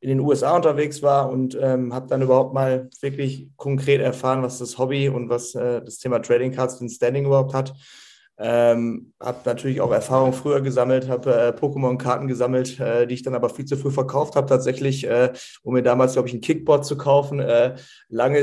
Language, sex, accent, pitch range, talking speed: German, male, German, 130-140 Hz, 200 wpm